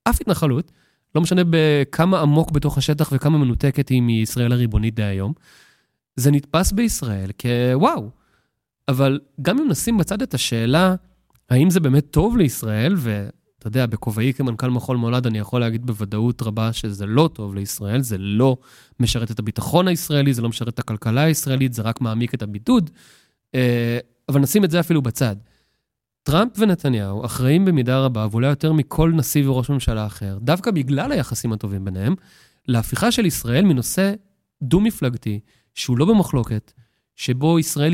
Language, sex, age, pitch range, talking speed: Hebrew, male, 20-39, 120-165 Hz, 150 wpm